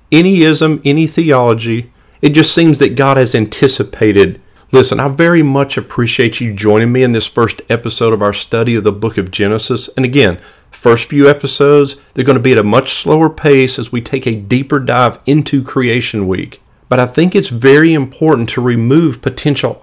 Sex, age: male, 40-59